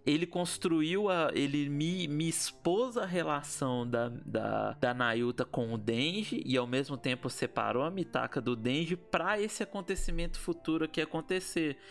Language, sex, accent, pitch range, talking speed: Portuguese, male, Brazilian, 130-175 Hz, 155 wpm